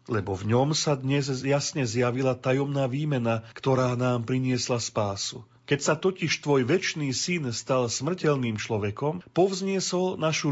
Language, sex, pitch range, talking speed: Slovak, male, 120-145 Hz, 135 wpm